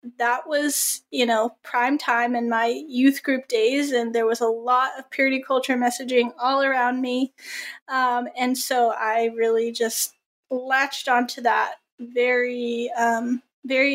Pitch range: 235-275 Hz